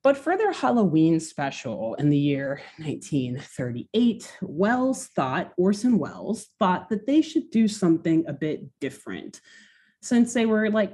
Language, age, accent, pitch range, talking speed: English, 30-49, American, 160-230 Hz, 145 wpm